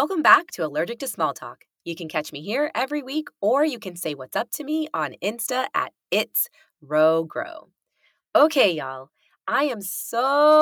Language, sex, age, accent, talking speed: English, female, 20-39, American, 185 wpm